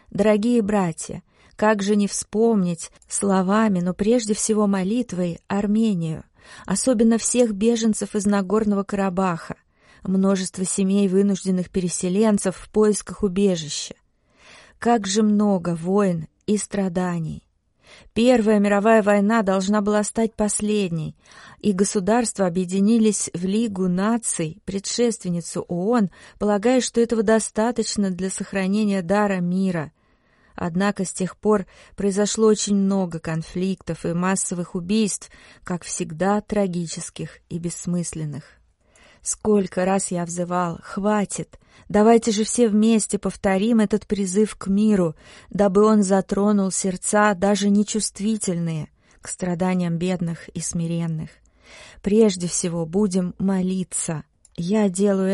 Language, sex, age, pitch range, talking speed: Russian, female, 30-49, 180-210 Hz, 110 wpm